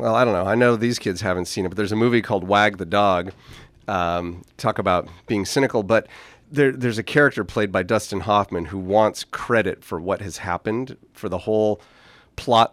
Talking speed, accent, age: 205 wpm, American, 40-59